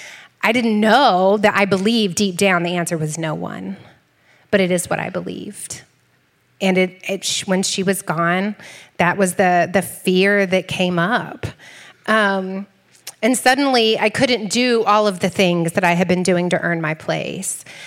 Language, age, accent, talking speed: English, 30-49, American, 180 wpm